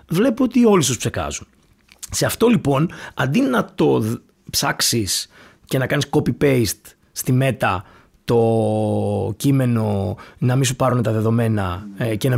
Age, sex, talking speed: 30-49, male, 140 wpm